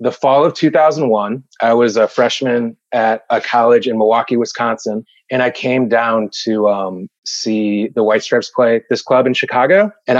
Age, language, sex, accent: 30-49, English, male, American